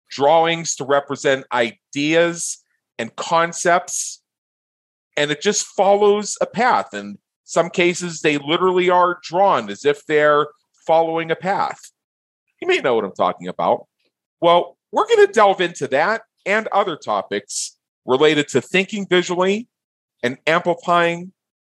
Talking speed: 135 wpm